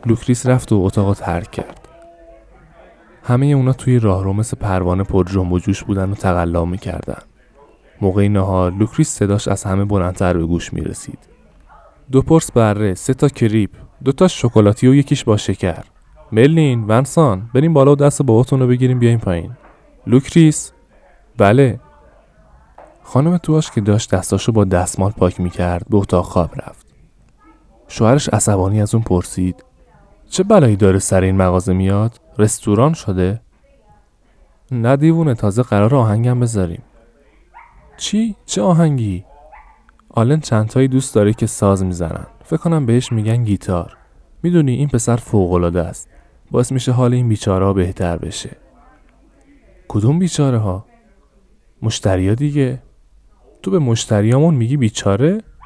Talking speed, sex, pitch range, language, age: 135 wpm, male, 95-130 Hz, Persian, 20-39